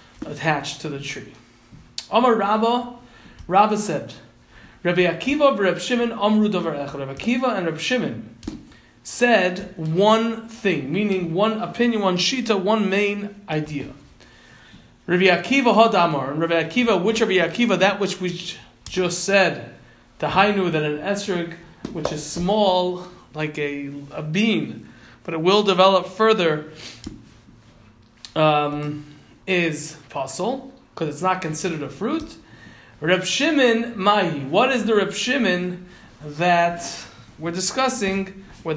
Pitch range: 155-220 Hz